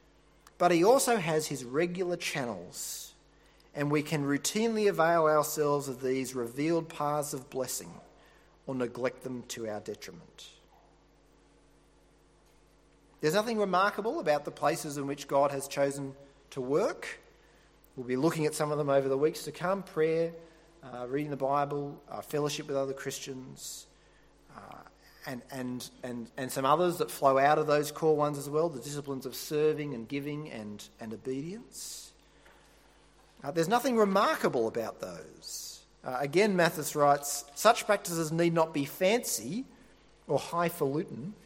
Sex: male